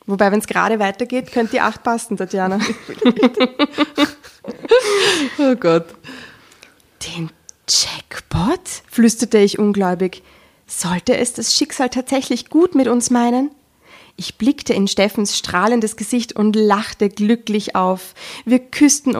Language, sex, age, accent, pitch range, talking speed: German, female, 20-39, German, 190-250 Hz, 120 wpm